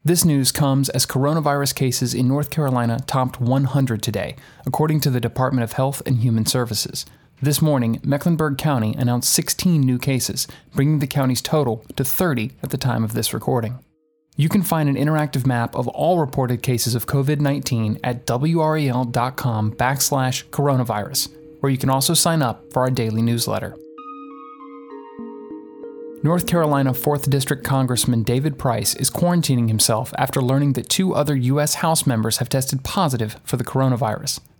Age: 30-49